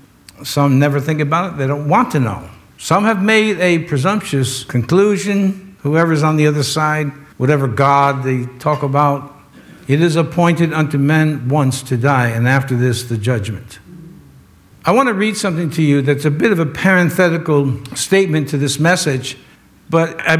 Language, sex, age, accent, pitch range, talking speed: English, male, 60-79, American, 135-185 Hz, 170 wpm